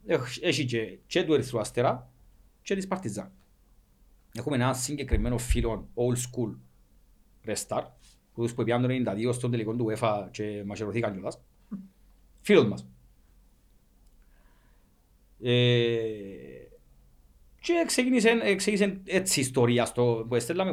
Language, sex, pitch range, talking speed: Greek, male, 95-135 Hz, 85 wpm